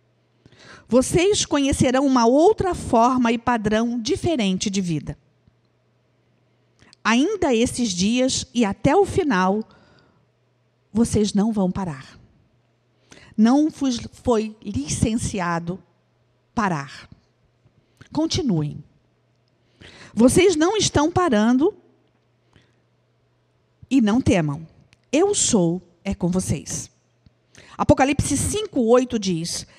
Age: 50-69